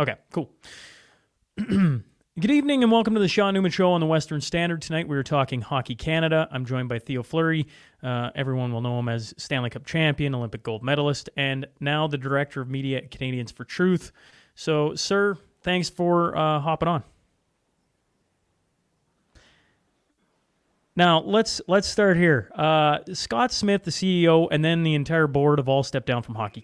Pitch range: 125-155 Hz